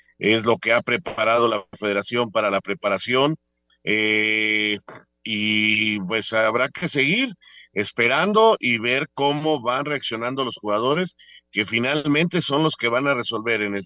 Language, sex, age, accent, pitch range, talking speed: Spanish, male, 50-69, Mexican, 105-130 Hz, 145 wpm